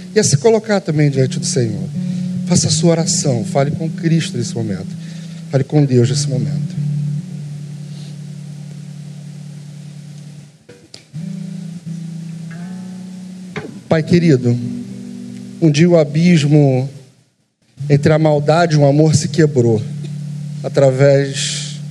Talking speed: 100 wpm